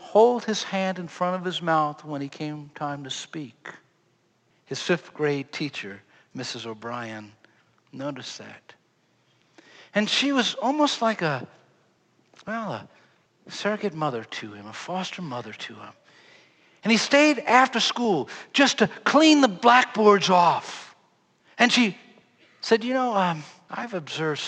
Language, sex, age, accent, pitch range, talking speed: English, male, 60-79, American, 150-225 Hz, 140 wpm